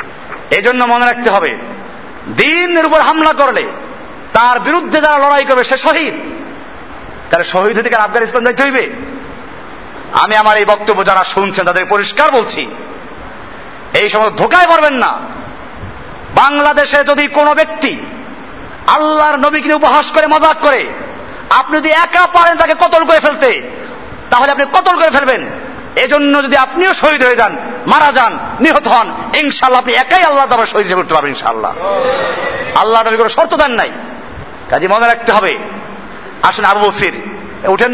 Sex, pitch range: male, 230-310 Hz